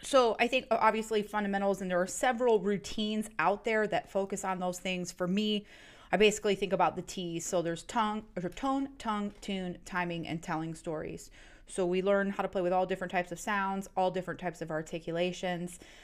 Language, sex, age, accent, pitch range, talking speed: English, female, 30-49, American, 170-205 Hz, 190 wpm